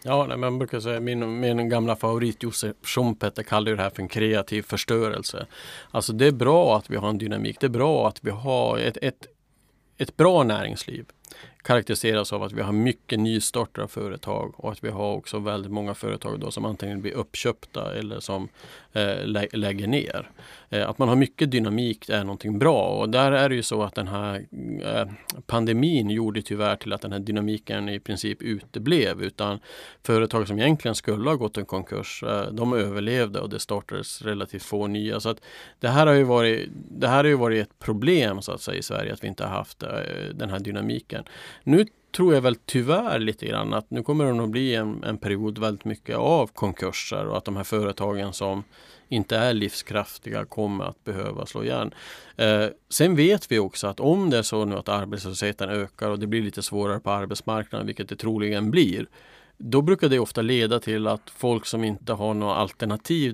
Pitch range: 105-120 Hz